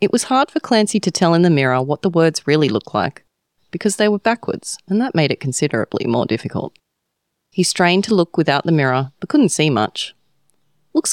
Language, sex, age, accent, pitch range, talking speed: English, female, 30-49, Australian, 130-175 Hz, 210 wpm